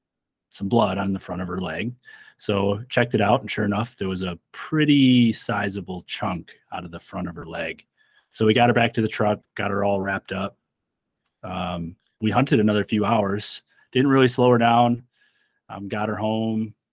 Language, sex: English, male